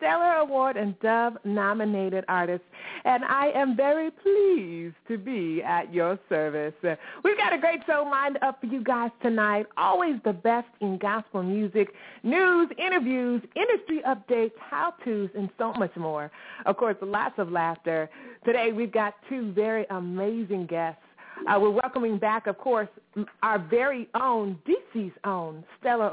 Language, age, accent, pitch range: English, 30-49, American, 185-265 Hz